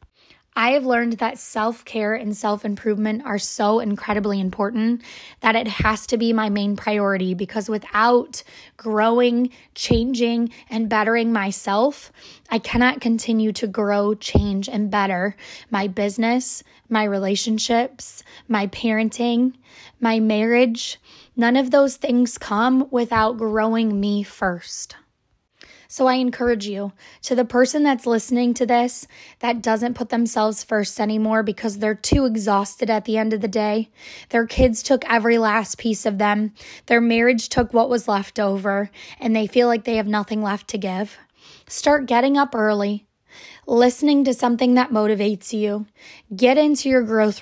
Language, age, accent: English, 10-29, American